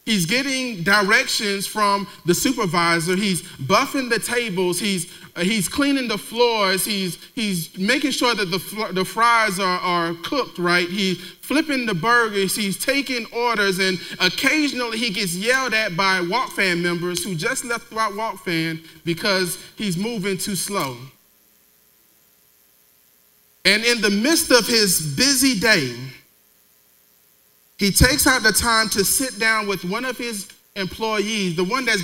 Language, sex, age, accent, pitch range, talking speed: English, male, 30-49, American, 170-225 Hz, 150 wpm